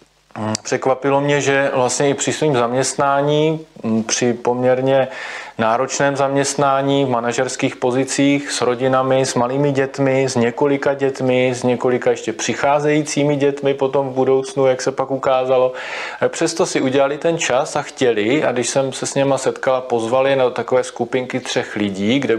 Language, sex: Slovak, male